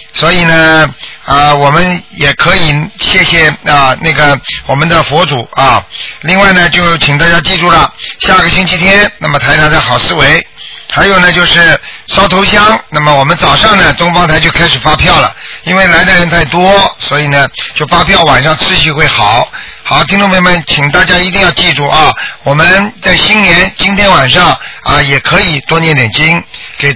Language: Chinese